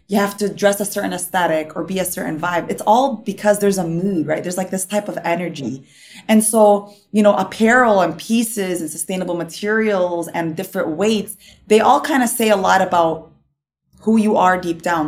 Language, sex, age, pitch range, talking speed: English, female, 20-39, 170-205 Hz, 205 wpm